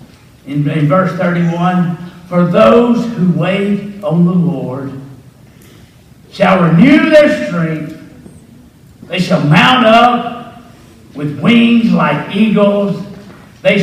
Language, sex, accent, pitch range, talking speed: English, male, American, 200-275 Hz, 105 wpm